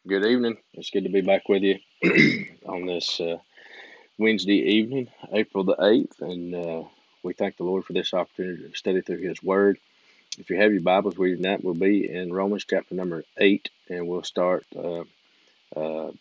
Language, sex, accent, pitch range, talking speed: English, male, American, 85-100 Hz, 180 wpm